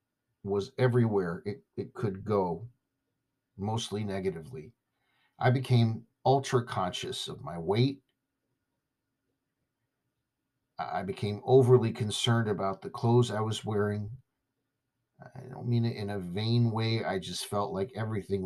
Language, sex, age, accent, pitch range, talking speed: English, male, 50-69, American, 115-130 Hz, 125 wpm